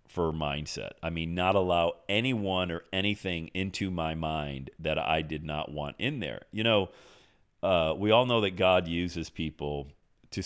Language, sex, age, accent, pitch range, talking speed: English, male, 40-59, American, 80-110 Hz, 170 wpm